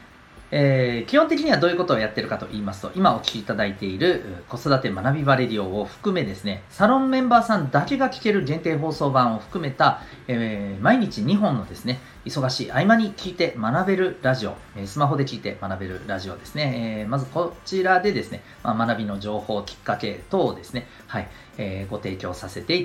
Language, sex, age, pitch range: Japanese, male, 40-59, 100-170 Hz